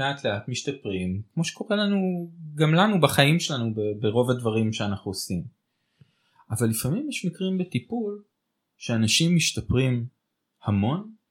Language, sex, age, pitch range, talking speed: Hebrew, male, 20-39, 105-155 Hz, 115 wpm